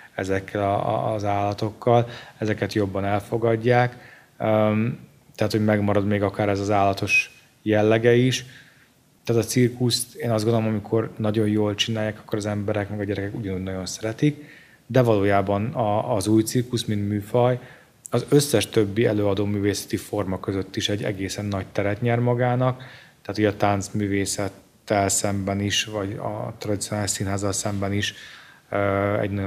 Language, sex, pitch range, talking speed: Hungarian, male, 100-115 Hz, 140 wpm